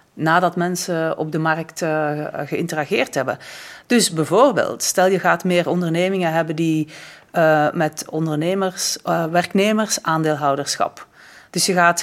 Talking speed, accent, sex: 125 wpm, Dutch, female